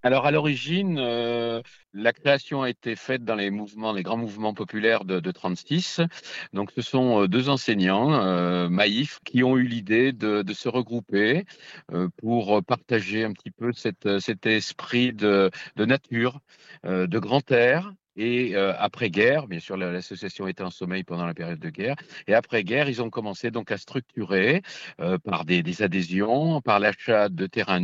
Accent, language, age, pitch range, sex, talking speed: French, French, 50-69, 95-120 Hz, male, 175 wpm